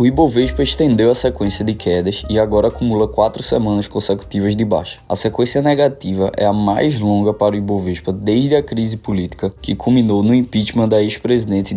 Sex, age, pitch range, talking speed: male, 20-39, 100-120 Hz, 180 wpm